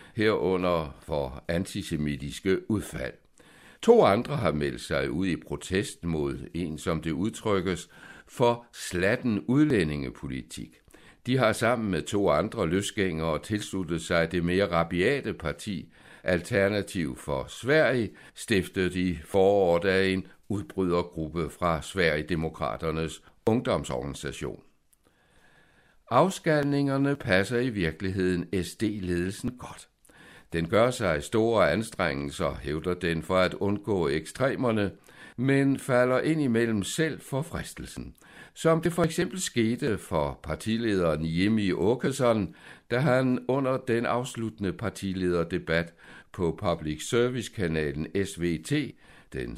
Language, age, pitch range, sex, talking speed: Danish, 60-79, 80-120 Hz, male, 110 wpm